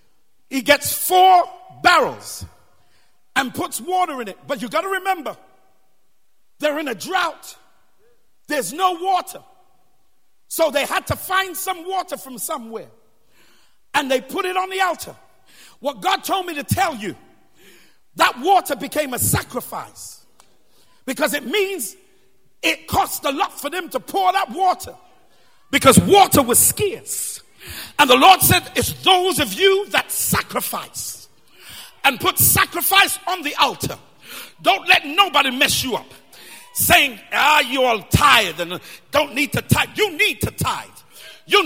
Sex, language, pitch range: male, English, 280-380 Hz